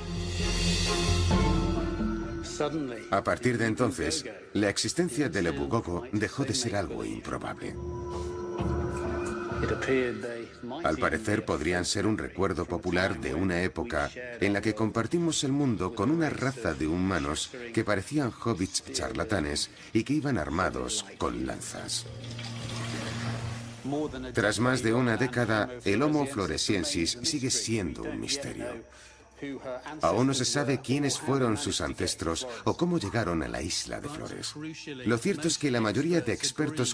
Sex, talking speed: male, 130 wpm